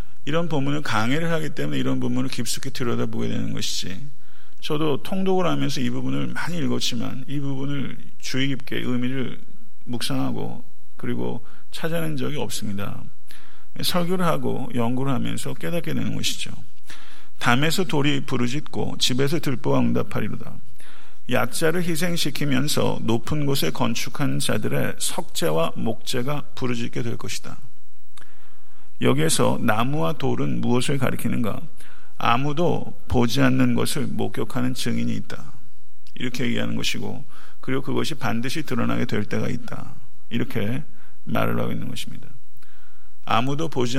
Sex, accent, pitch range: male, native, 120-145 Hz